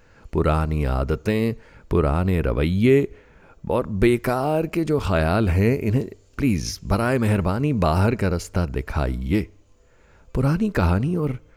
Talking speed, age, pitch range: 110 wpm, 50-69, 80-110 Hz